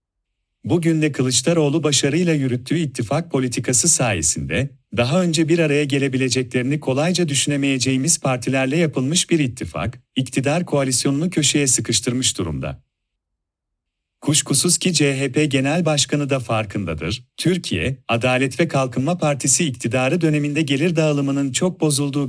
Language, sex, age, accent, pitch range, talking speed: Turkish, male, 40-59, native, 120-155 Hz, 115 wpm